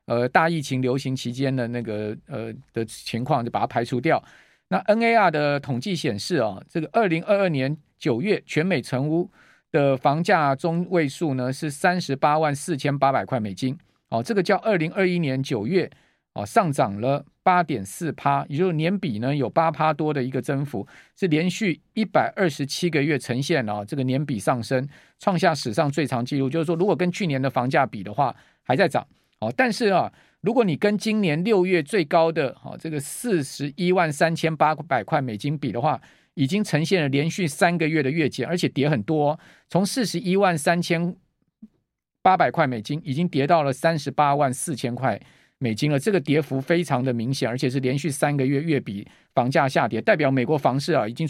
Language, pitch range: Chinese, 135-175 Hz